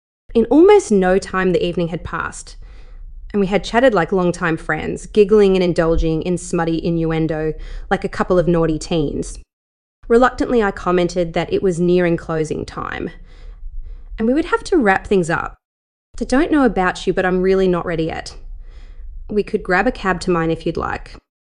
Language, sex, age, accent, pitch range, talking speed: English, female, 20-39, Australian, 165-200 Hz, 180 wpm